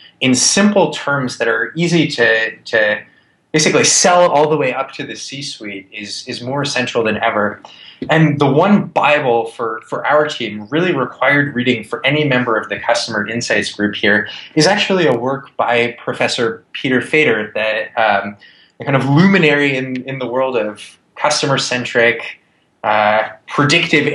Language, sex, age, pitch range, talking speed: English, male, 20-39, 115-155 Hz, 155 wpm